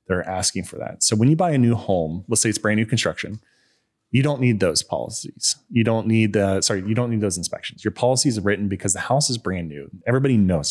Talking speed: 245 wpm